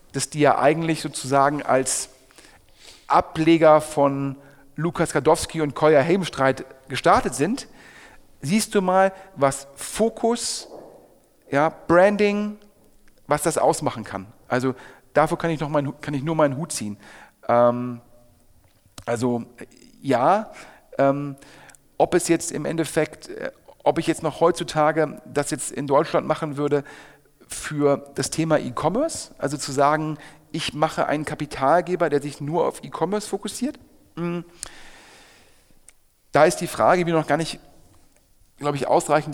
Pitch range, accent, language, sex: 135-165 Hz, German, German, male